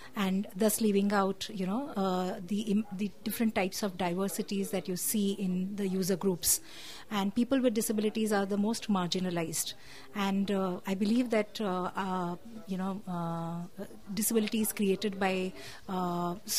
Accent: Indian